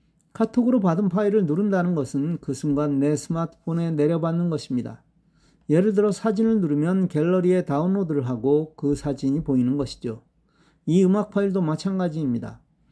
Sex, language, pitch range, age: male, Korean, 140-180 Hz, 40-59